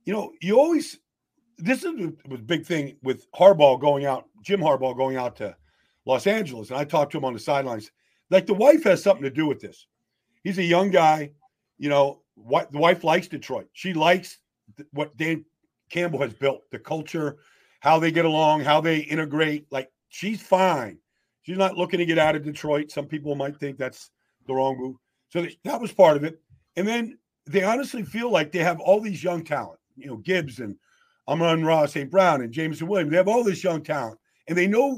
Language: English